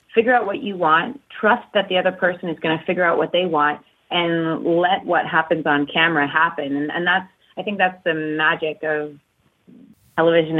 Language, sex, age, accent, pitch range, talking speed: English, female, 30-49, American, 150-185 Hz, 200 wpm